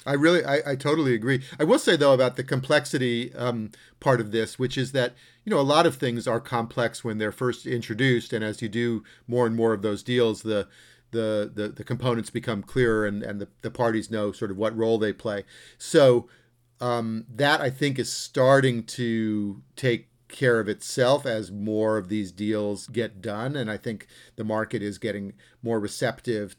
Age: 40-59